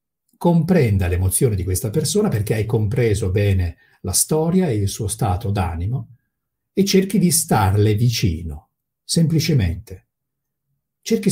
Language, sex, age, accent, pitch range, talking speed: Italian, male, 50-69, native, 105-170 Hz, 120 wpm